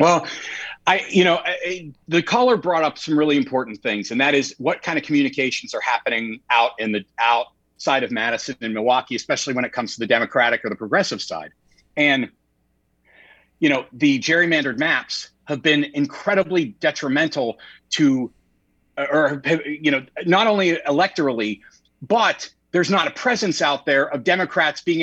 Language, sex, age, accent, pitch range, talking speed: English, male, 40-59, American, 140-180 Hz, 160 wpm